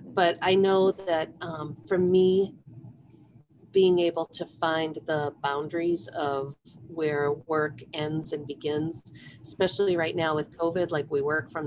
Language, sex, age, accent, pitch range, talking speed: English, female, 40-59, American, 140-165 Hz, 145 wpm